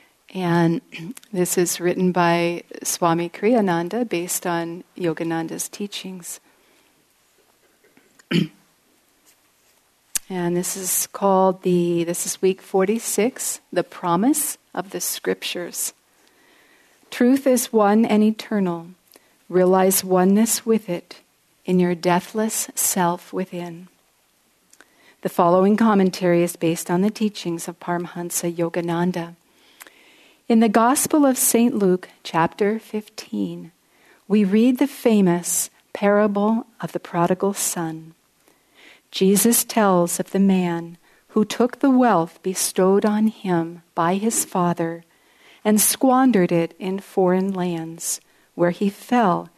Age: 50-69